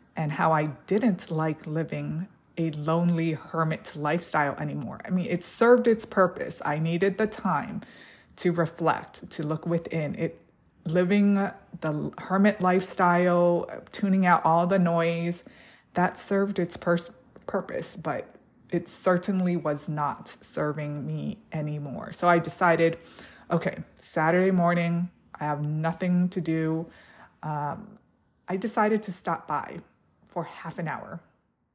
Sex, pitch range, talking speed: female, 160-200 Hz, 130 wpm